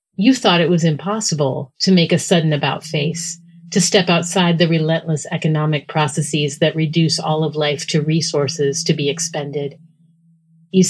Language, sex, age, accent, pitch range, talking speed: English, female, 40-59, American, 155-185 Hz, 155 wpm